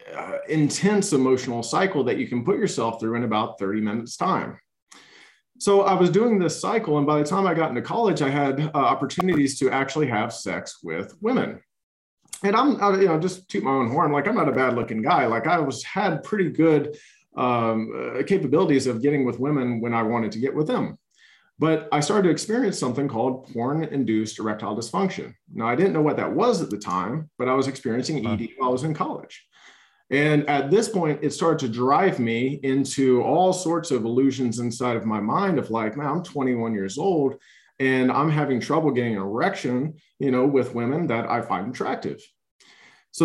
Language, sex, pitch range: English, male, 120-160 Hz